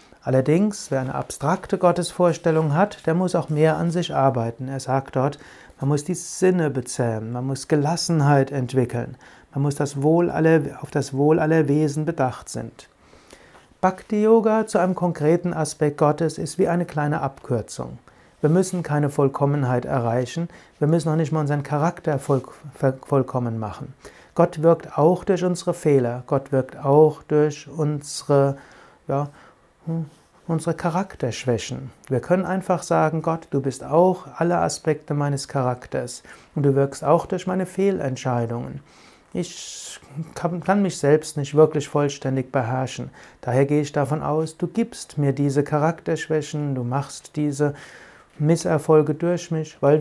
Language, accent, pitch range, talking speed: German, German, 135-165 Hz, 145 wpm